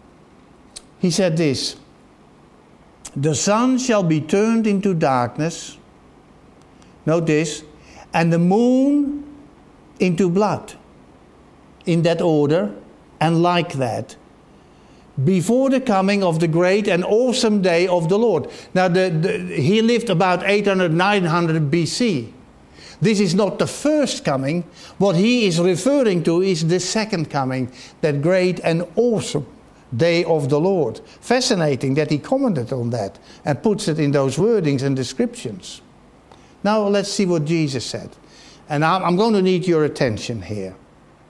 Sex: male